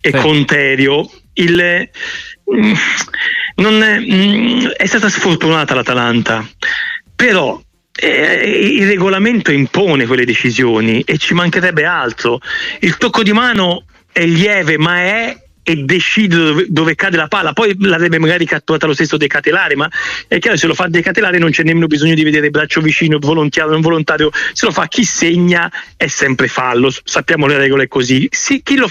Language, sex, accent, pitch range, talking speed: Italian, male, native, 155-205 Hz, 160 wpm